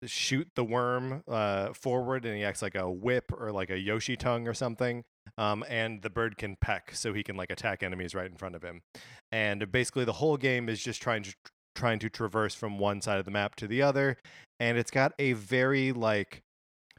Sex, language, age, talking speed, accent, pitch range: male, English, 20-39, 220 wpm, American, 100-120 Hz